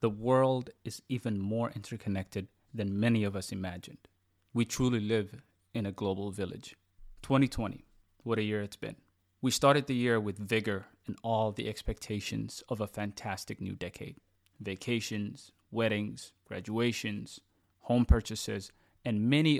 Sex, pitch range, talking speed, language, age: male, 100-115 Hz, 140 wpm, English, 30-49